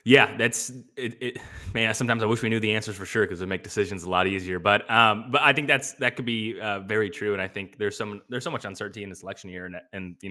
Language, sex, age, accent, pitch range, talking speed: English, male, 20-39, American, 95-125 Hz, 285 wpm